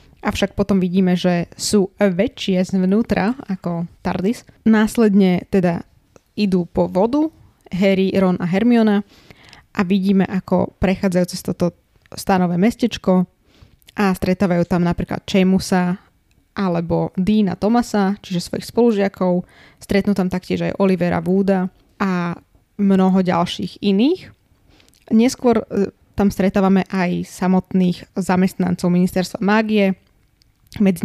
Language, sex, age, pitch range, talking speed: Slovak, female, 20-39, 185-205 Hz, 110 wpm